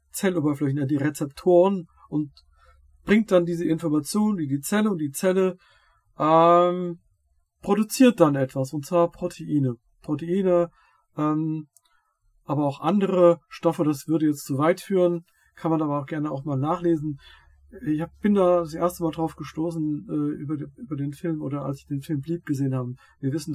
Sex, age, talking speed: male, 50-69, 170 wpm